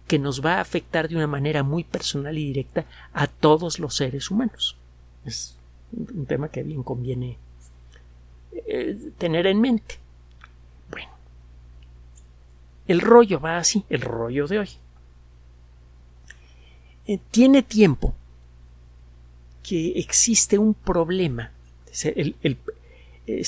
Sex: male